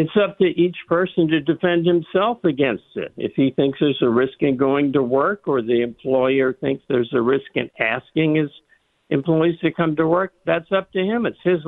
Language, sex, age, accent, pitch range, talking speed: English, male, 60-79, American, 130-170 Hz, 210 wpm